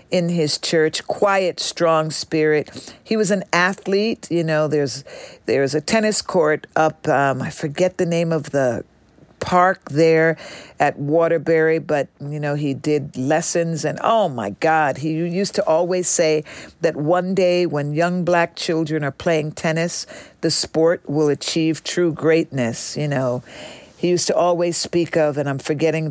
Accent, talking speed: American, 165 wpm